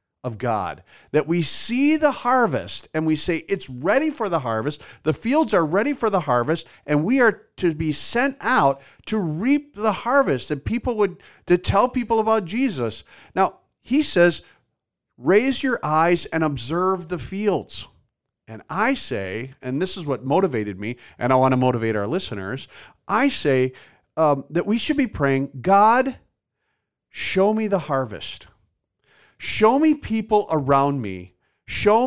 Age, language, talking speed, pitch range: 50-69, English, 160 wpm, 140-215 Hz